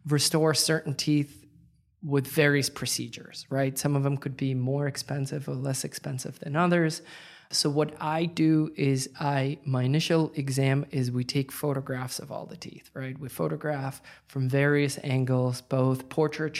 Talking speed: 160 wpm